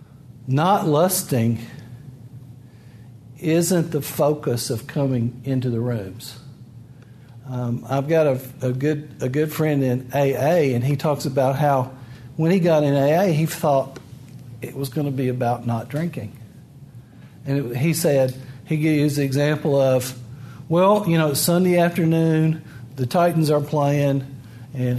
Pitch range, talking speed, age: 130-155 Hz, 135 wpm, 50-69